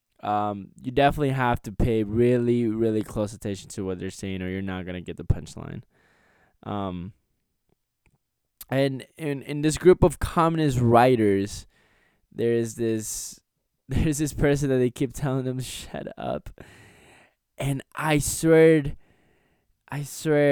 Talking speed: 135 wpm